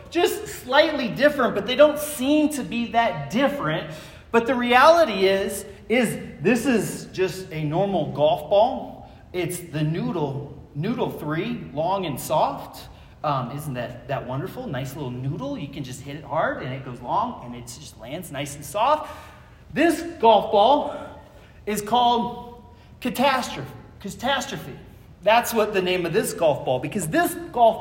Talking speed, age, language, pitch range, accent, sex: 160 wpm, 30-49, English, 165-275 Hz, American, male